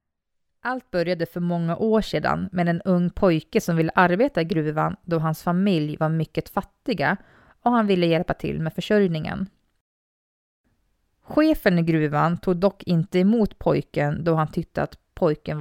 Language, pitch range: Swedish, 160-205 Hz